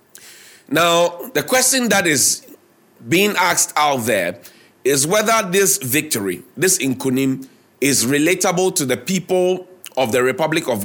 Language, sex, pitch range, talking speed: English, male, 140-180 Hz, 135 wpm